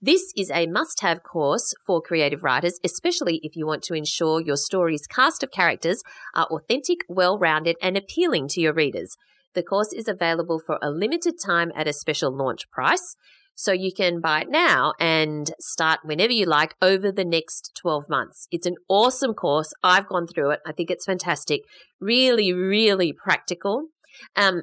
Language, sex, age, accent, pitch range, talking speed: English, female, 30-49, Australian, 155-210 Hz, 175 wpm